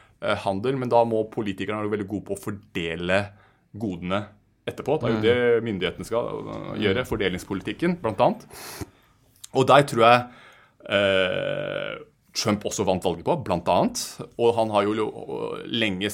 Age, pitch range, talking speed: 30-49, 95-115 Hz, 140 wpm